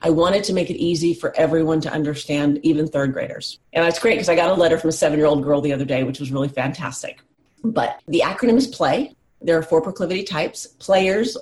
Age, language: 40-59, English